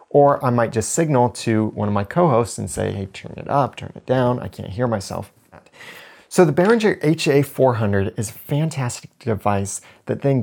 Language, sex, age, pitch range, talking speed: English, male, 30-49, 105-140 Hz, 190 wpm